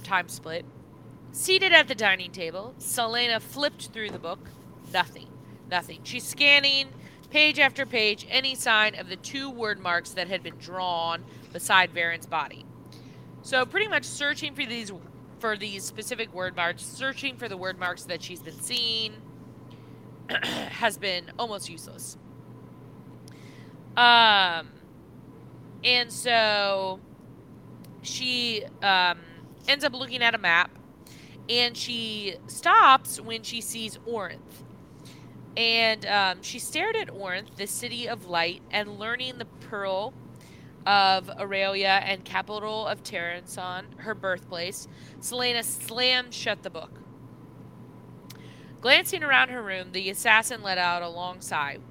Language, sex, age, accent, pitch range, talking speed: English, female, 30-49, American, 180-240 Hz, 130 wpm